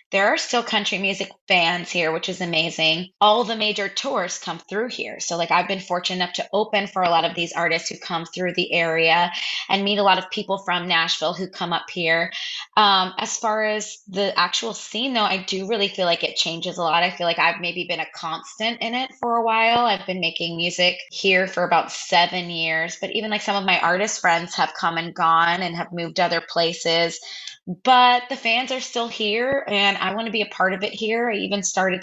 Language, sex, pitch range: English, female, 175-210 Hz